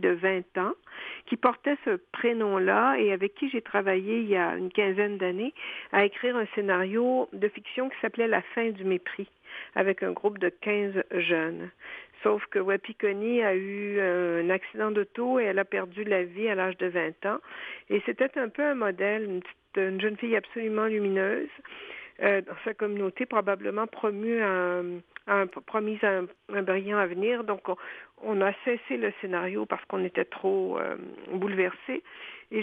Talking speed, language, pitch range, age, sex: 175 wpm, French, 190-235 Hz, 50-69, female